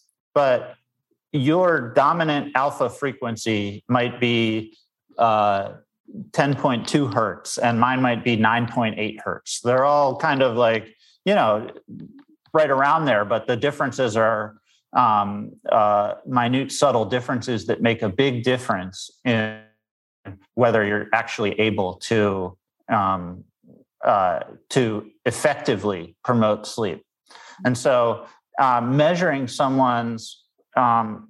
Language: English